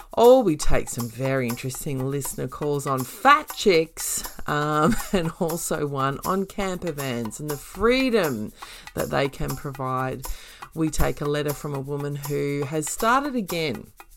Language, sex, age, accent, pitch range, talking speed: English, female, 30-49, Australian, 135-165 Hz, 150 wpm